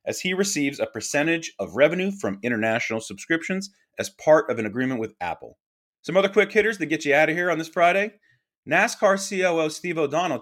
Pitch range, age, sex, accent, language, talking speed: 115-160 Hz, 30-49, male, American, English, 195 wpm